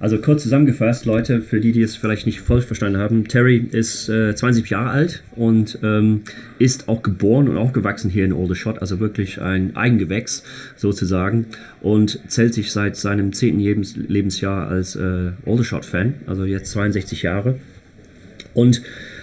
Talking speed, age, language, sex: 160 wpm, 30-49, German, male